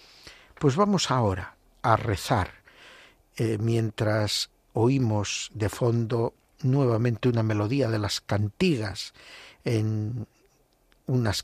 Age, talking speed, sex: 60-79, 90 wpm, male